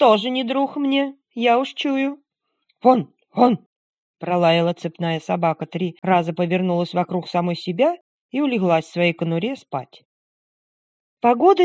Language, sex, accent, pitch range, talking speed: Russian, female, native, 175-235 Hz, 130 wpm